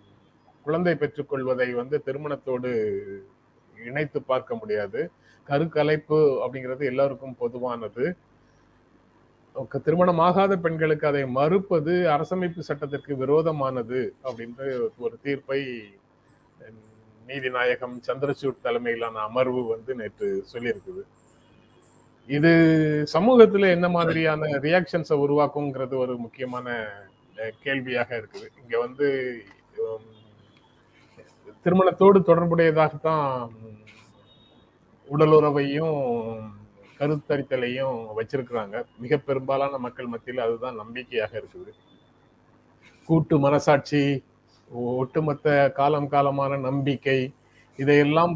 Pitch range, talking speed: 125-155 Hz, 75 wpm